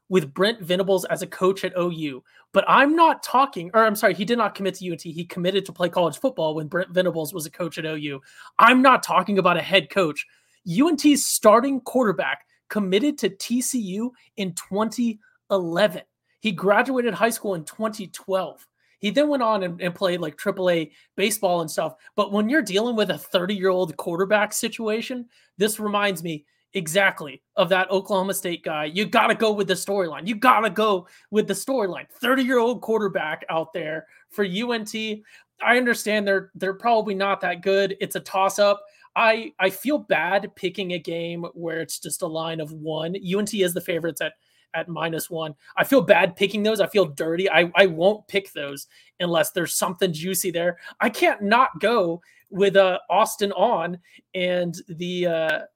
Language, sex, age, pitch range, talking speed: English, male, 30-49, 175-220 Hz, 180 wpm